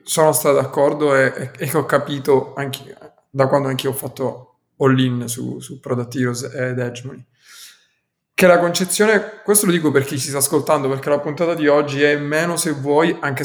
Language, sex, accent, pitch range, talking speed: Italian, male, native, 130-145 Hz, 185 wpm